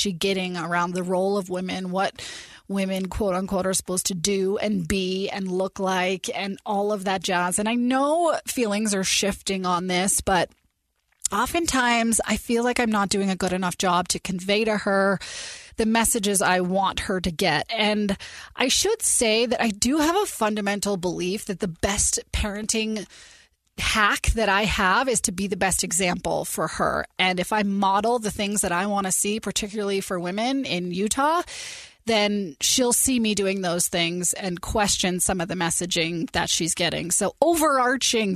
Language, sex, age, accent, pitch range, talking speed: English, female, 20-39, American, 185-230 Hz, 185 wpm